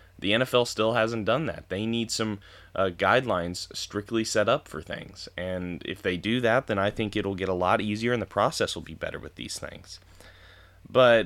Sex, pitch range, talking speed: male, 90-110 Hz, 210 wpm